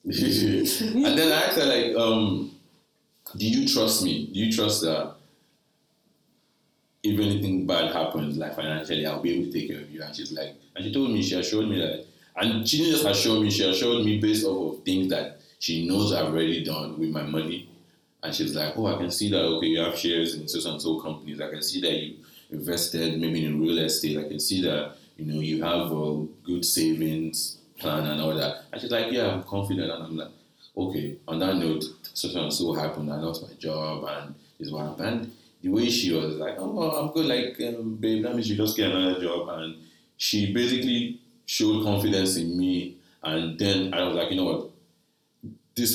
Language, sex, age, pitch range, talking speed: English, male, 30-49, 80-105 Hz, 210 wpm